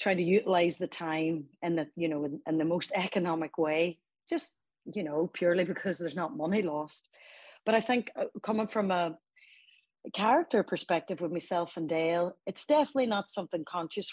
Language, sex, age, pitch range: English, female, 30-49, 165-205 Hz